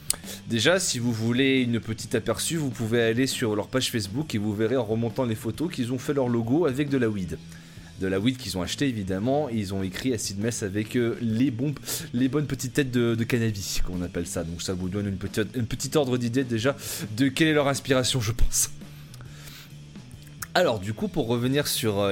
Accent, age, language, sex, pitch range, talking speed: French, 20-39, French, male, 110-150 Hz, 200 wpm